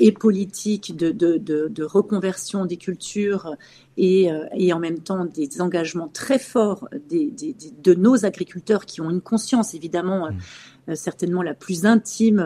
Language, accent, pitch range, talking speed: French, French, 165-205 Hz, 175 wpm